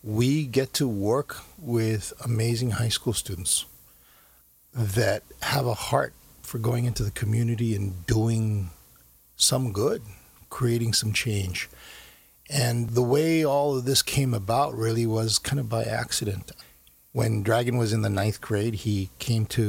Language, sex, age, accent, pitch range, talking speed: English, male, 50-69, American, 100-120 Hz, 150 wpm